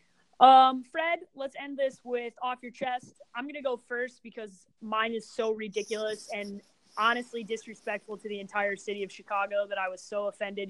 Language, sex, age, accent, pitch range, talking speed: English, female, 20-39, American, 200-250 Hz, 185 wpm